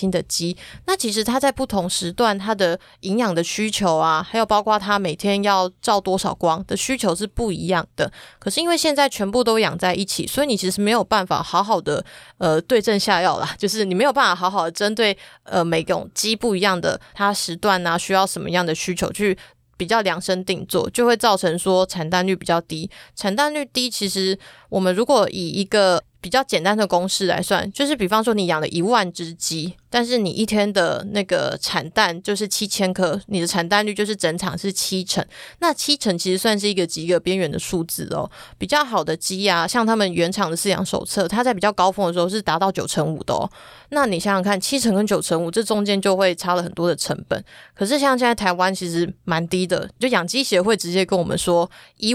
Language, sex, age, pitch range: Chinese, female, 20-39, 180-215 Hz